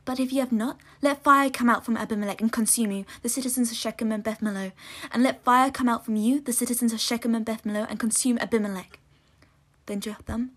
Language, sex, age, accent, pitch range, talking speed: English, female, 20-39, British, 205-240 Hz, 215 wpm